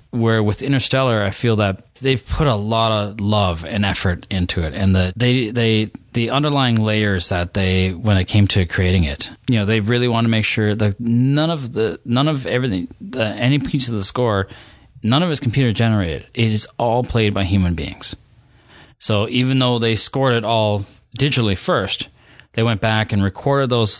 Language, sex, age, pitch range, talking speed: English, male, 20-39, 100-120 Hz, 200 wpm